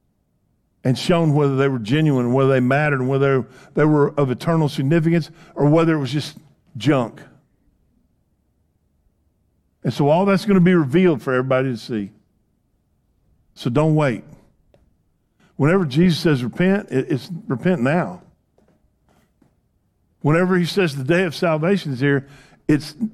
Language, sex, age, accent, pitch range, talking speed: English, male, 50-69, American, 120-160 Hz, 135 wpm